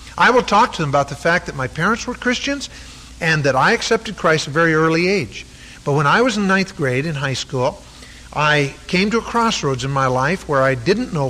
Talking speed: 240 wpm